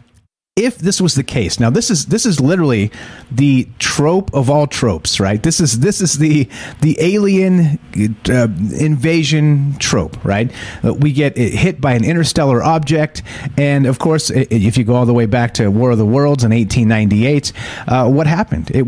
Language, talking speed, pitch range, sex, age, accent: English, 180 wpm, 110-155 Hz, male, 30-49, American